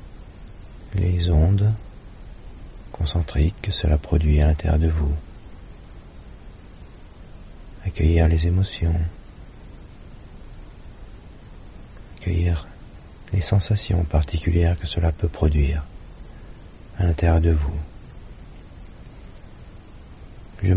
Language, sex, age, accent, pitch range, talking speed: English, male, 40-59, French, 75-95 Hz, 75 wpm